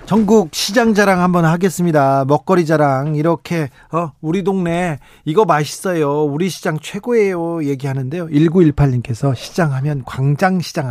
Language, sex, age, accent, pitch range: Korean, male, 40-59, native, 135-180 Hz